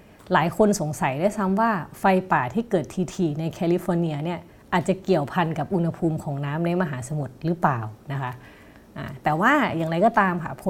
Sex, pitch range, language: female, 150-190 Hz, Thai